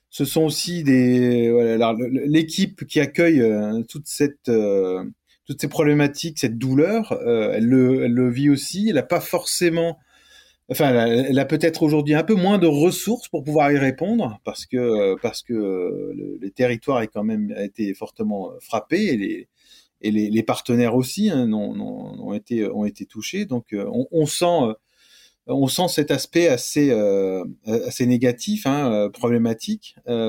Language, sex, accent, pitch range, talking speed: French, male, French, 120-175 Hz, 175 wpm